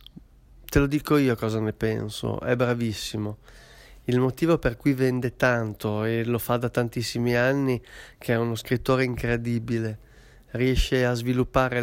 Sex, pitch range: male, 115-130 Hz